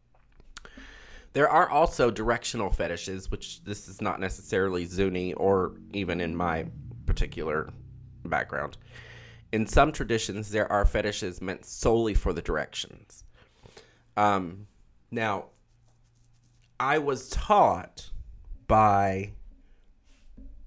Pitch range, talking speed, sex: 85-115 Hz, 100 wpm, male